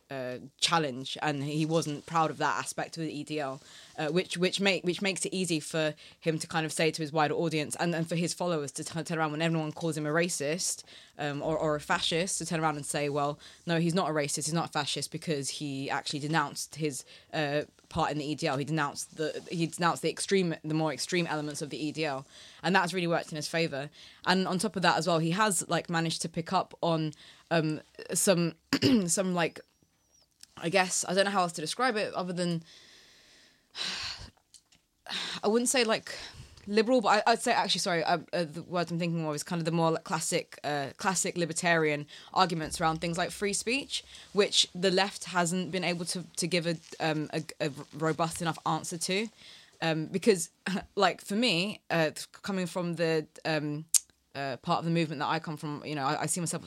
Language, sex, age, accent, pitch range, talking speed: English, female, 20-39, British, 150-180 Hz, 215 wpm